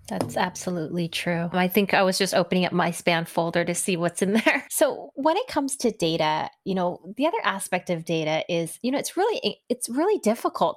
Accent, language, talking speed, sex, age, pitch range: American, English, 215 wpm, female, 20-39, 155-190 Hz